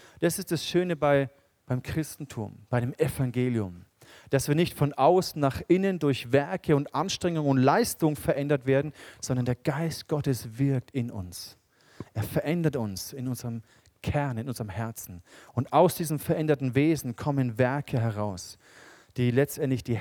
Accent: German